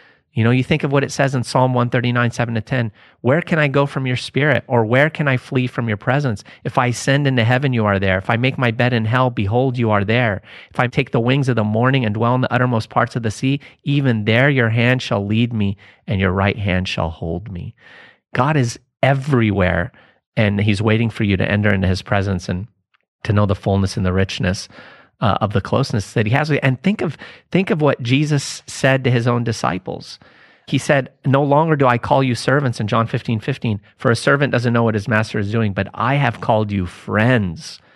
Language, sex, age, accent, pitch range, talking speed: English, male, 30-49, American, 105-130 Hz, 235 wpm